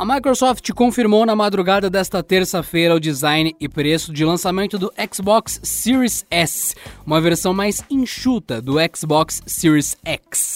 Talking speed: 140 wpm